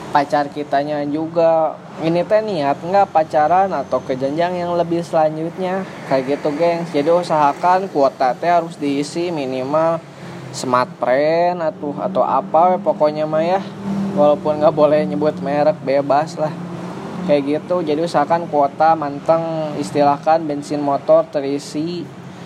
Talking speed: 125 wpm